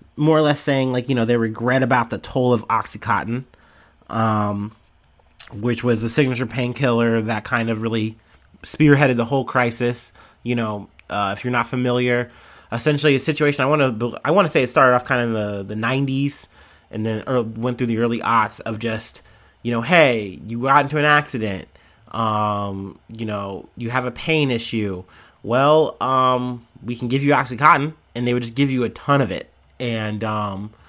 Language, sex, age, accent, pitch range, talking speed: English, male, 30-49, American, 110-135 Hz, 190 wpm